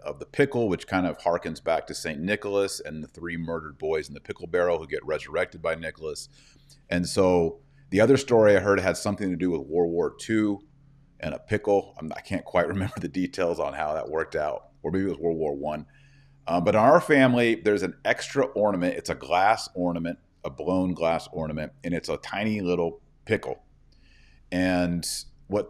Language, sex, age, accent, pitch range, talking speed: English, male, 40-59, American, 85-125 Hz, 200 wpm